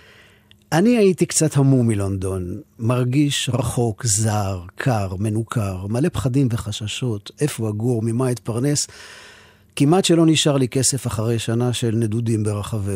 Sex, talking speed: male, 125 wpm